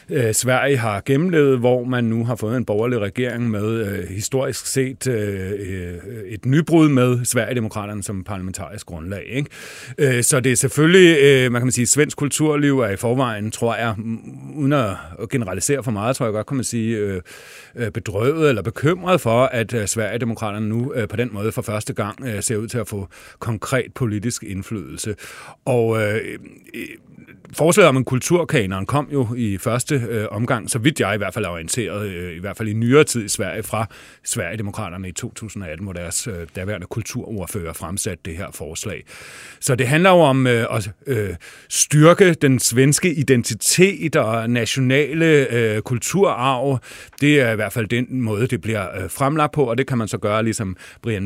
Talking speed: 180 wpm